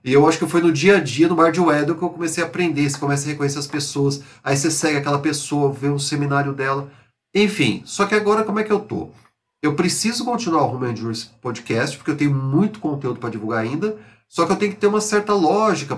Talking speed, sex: 250 wpm, male